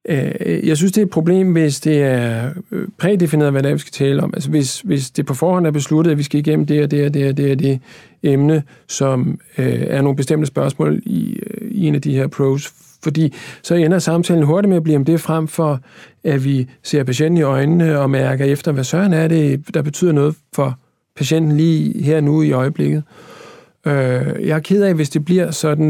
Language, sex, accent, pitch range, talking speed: Danish, male, native, 140-165 Hz, 210 wpm